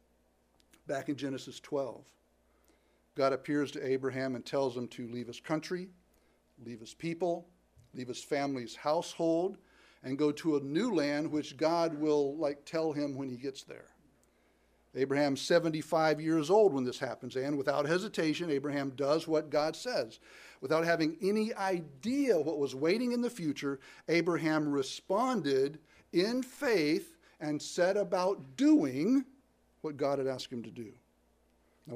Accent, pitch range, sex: American, 130-170 Hz, male